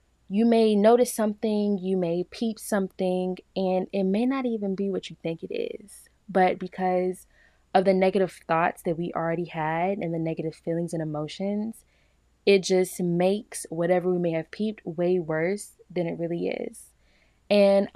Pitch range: 165-200 Hz